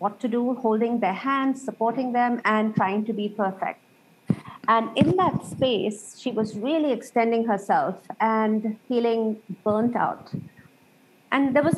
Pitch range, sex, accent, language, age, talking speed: 210-250 Hz, female, Indian, English, 50-69, 150 wpm